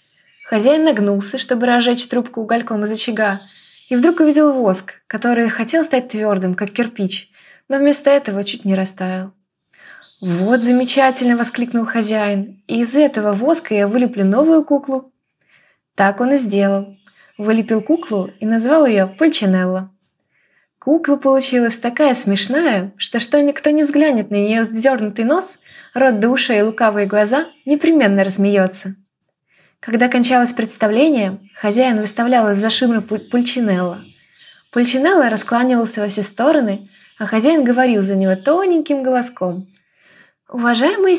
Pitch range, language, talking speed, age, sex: 200-275 Hz, Ukrainian, 130 wpm, 20-39, female